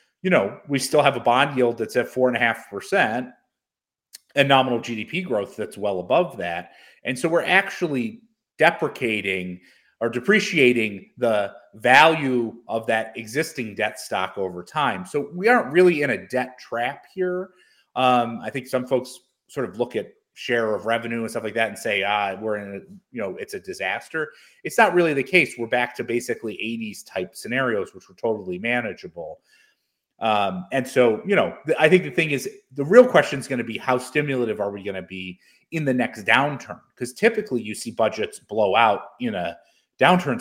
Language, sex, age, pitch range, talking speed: English, male, 30-49, 105-155 Hz, 190 wpm